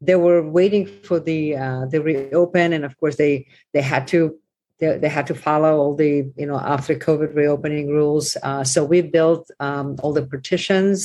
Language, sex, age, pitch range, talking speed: English, female, 50-69, 140-160 Hz, 195 wpm